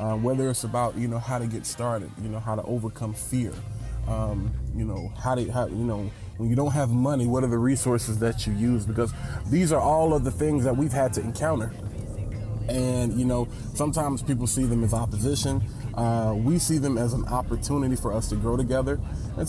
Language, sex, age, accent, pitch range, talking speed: English, male, 20-39, American, 110-125 Hz, 215 wpm